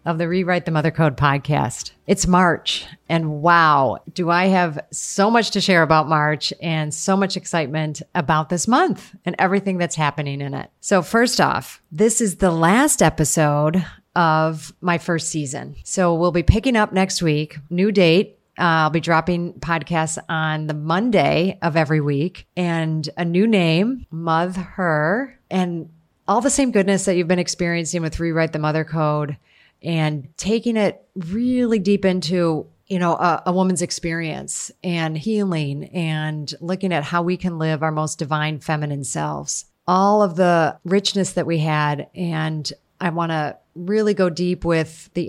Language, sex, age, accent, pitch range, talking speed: English, female, 40-59, American, 155-185 Hz, 170 wpm